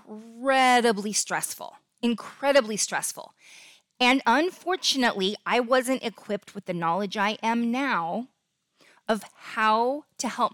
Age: 20-39